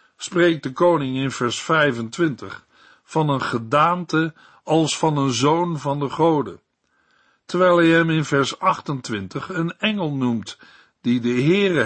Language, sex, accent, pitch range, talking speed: Dutch, male, Dutch, 135-165 Hz, 140 wpm